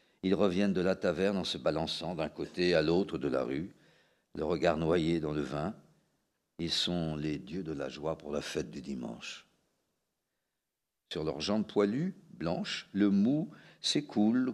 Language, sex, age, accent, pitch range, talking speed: French, male, 50-69, French, 85-105 Hz, 170 wpm